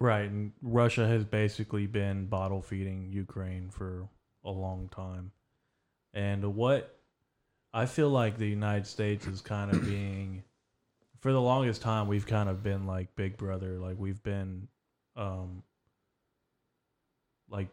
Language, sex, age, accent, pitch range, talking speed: English, male, 20-39, American, 95-110 Hz, 140 wpm